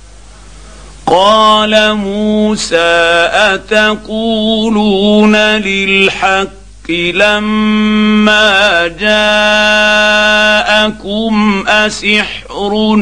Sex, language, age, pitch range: male, Arabic, 50-69, 170-210 Hz